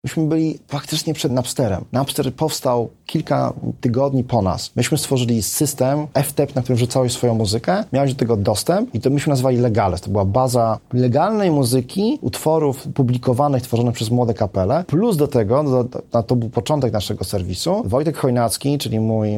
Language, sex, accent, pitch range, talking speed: Polish, male, native, 110-140 Hz, 165 wpm